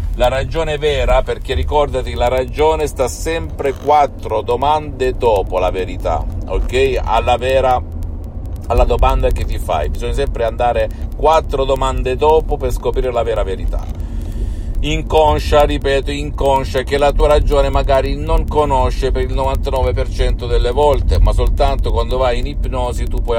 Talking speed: 145 wpm